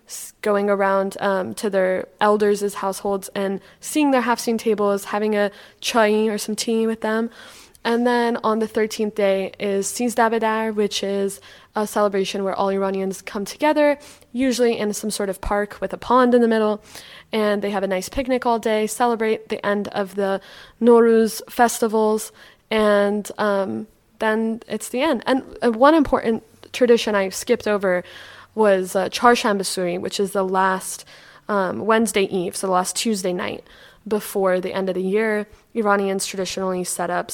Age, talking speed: 20-39, 165 wpm